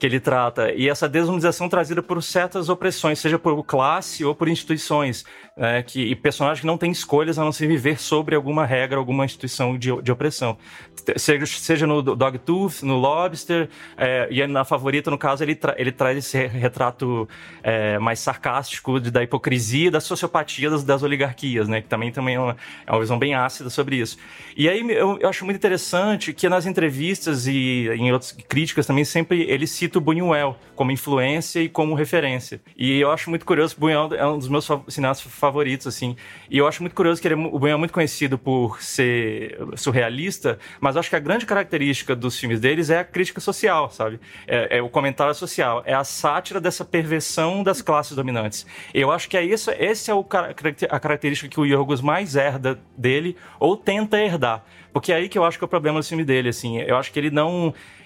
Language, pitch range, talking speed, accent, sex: Portuguese, 130-165 Hz, 205 wpm, Brazilian, male